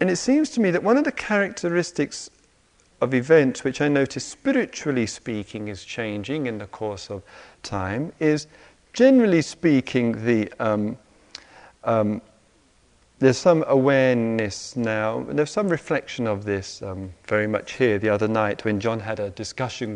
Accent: British